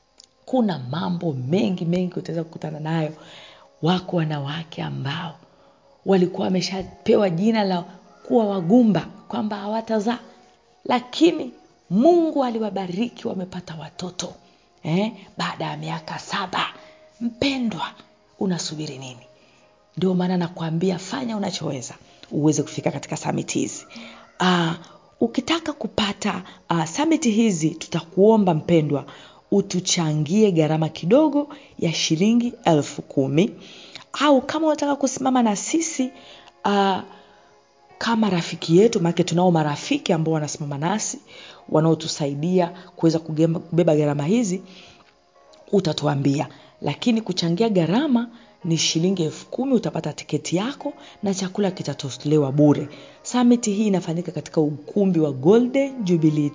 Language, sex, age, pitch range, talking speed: Swahili, female, 50-69, 160-220 Hz, 105 wpm